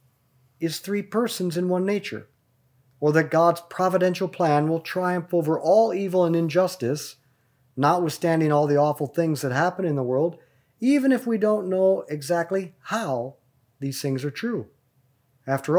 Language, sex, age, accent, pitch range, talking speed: English, male, 40-59, American, 130-175 Hz, 150 wpm